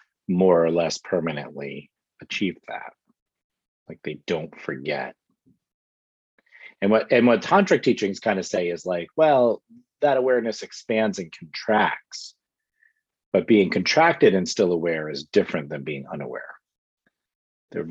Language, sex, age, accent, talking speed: English, male, 40-59, American, 130 wpm